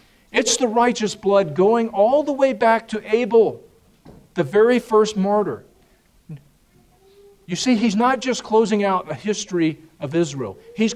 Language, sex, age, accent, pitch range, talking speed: English, male, 50-69, American, 155-210 Hz, 150 wpm